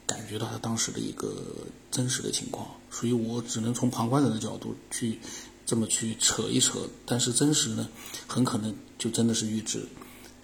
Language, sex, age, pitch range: Chinese, male, 50-69, 115-130 Hz